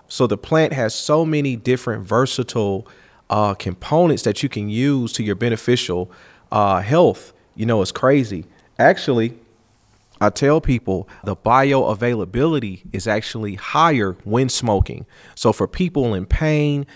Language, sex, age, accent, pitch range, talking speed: English, male, 40-59, American, 100-130 Hz, 140 wpm